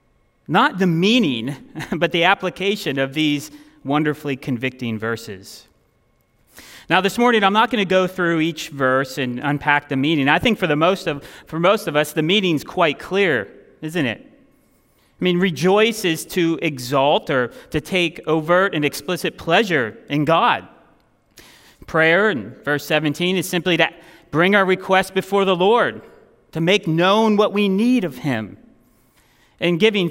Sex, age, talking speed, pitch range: male, 30-49, 160 wpm, 145-190 Hz